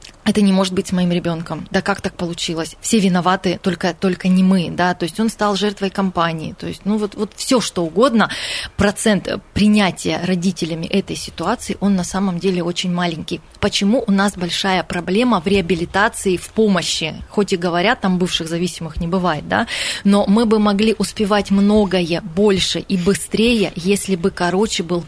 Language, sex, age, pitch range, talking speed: Russian, female, 20-39, 175-210 Hz, 175 wpm